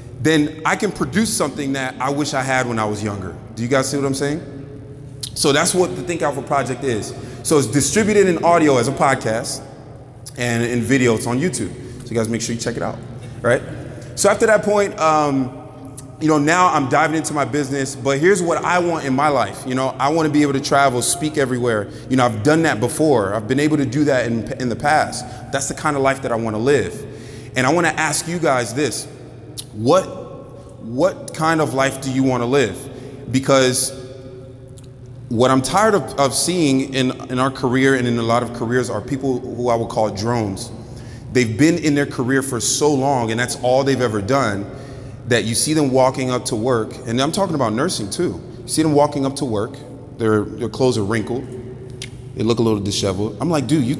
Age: 20-39